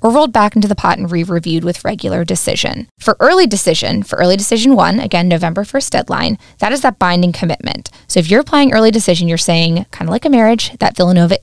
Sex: female